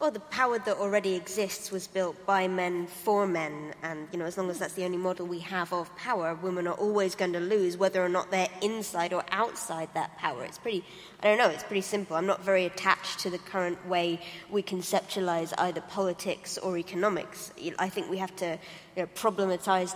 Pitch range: 180-225 Hz